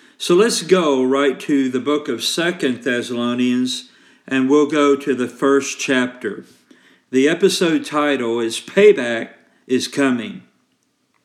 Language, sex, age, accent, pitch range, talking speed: English, male, 50-69, American, 130-170 Hz, 130 wpm